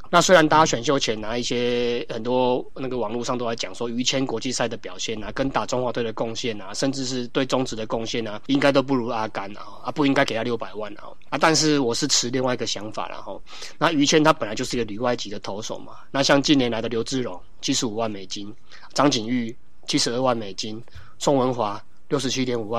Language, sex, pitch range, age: Chinese, male, 115-135 Hz, 20-39